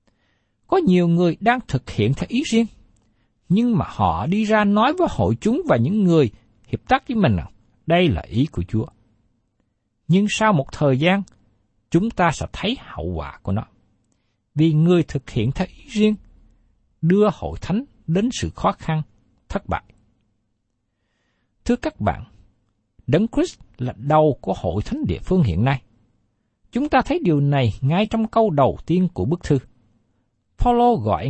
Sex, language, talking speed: male, Vietnamese, 165 wpm